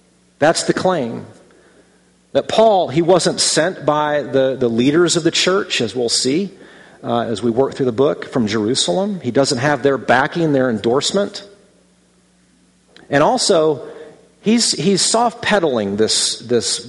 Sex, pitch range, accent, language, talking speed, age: male, 120-165 Hz, American, English, 145 wpm, 40-59